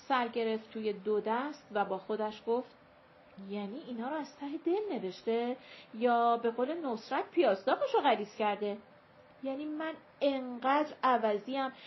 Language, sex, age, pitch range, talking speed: Persian, female, 40-59, 200-280 Hz, 140 wpm